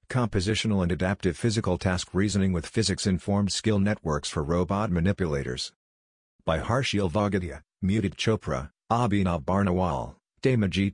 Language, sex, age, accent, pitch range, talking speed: English, male, 50-69, American, 90-100 Hz, 115 wpm